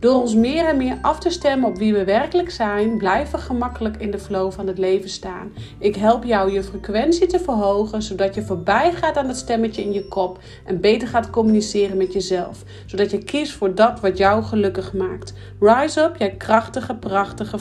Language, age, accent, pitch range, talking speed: Dutch, 40-59, Dutch, 185-225 Hz, 205 wpm